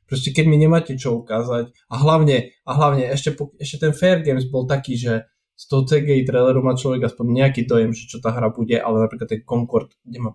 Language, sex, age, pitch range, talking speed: Slovak, male, 10-29, 115-145 Hz, 215 wpm